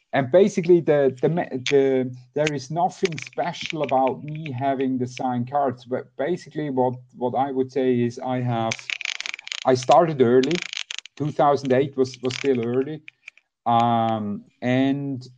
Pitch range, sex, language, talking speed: 115-135 Hz, male, English, 135 wpm